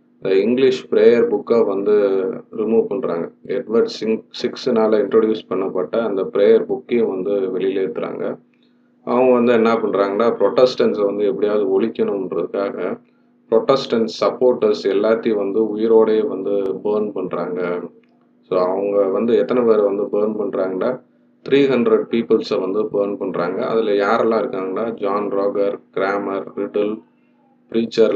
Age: 30-49